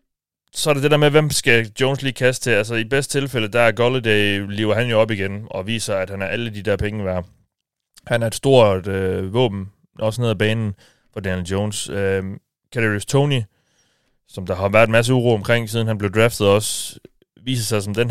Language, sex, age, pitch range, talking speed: Danish, male, 30-49, 95-120 Hz, 225 wpm